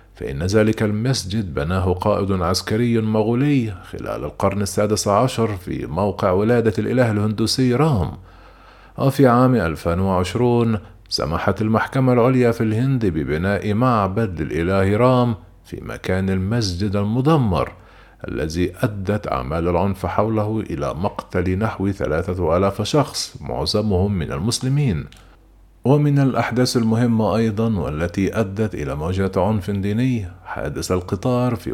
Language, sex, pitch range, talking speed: Arabic, male, 90-120 Hz, 115 wpm